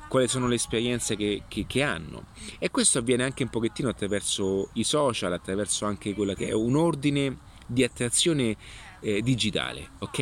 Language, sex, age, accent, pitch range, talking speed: Italian, male, 30-49, native, 105-135 Hz, 170 wpm